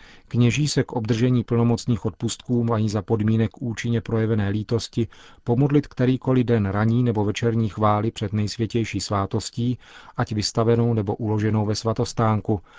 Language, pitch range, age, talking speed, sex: Czech, 105-120 Hz, 40-59, 130 wpm, male